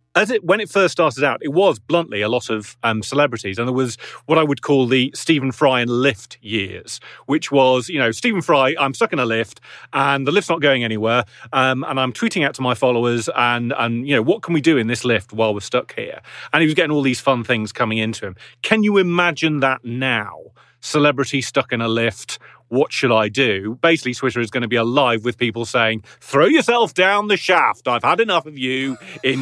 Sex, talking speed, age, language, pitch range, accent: male, 235 wpm, 30-49, English, 120-165 Hz, British